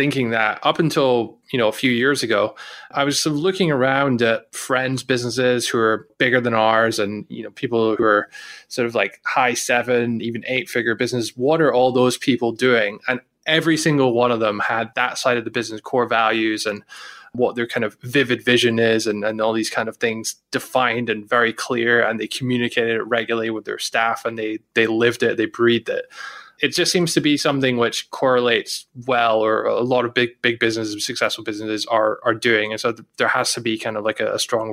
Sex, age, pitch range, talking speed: male, 20-39, 115-130 Hz, 215 wpm